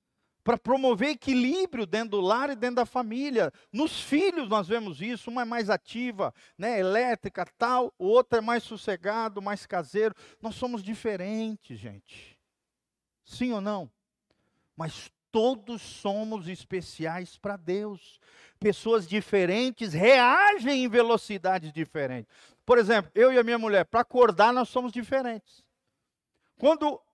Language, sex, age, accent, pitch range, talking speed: Portuguese, male, 50-69, Brazilian, 160-240 Hz, 135 wpm